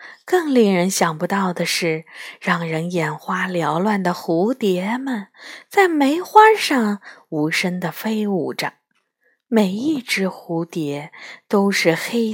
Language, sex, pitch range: Chinese, female, 175-250 Hz